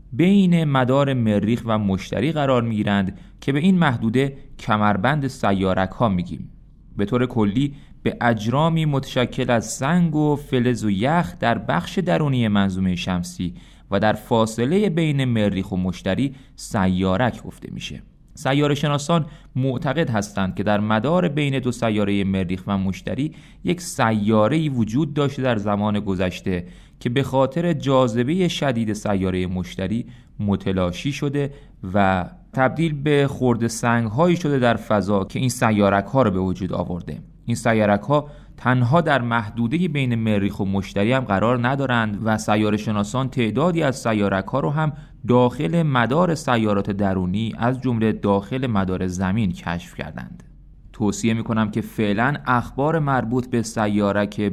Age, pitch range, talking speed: 30-49, 100-135 Hz, 145 wpm